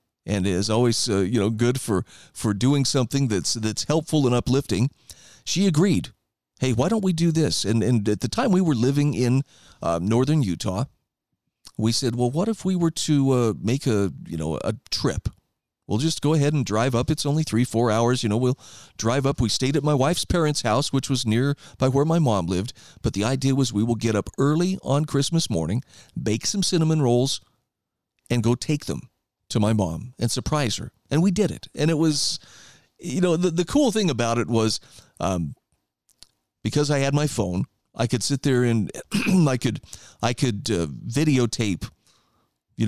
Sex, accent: male, American